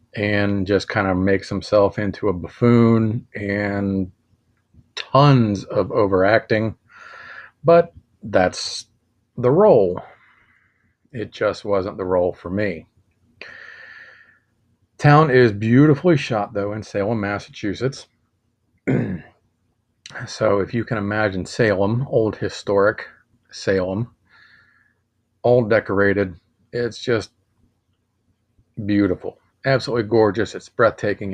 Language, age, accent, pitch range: English, 40-59, American, 100-120 Hz